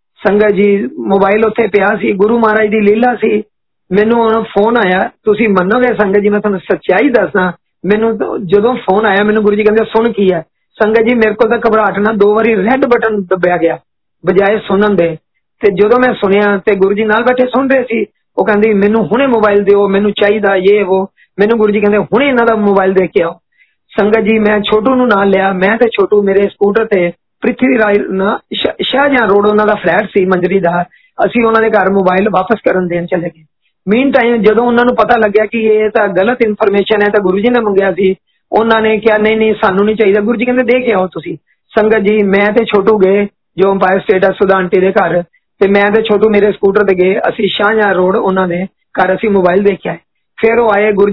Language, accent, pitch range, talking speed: Hindi, native, 195-225 Hz, 105 wpm